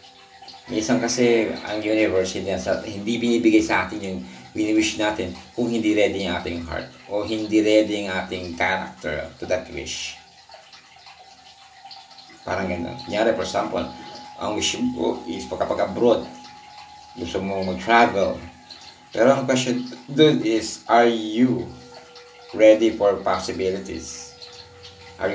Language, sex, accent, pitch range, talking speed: Filipino, male, native, 90-120 Hz, 125 wpm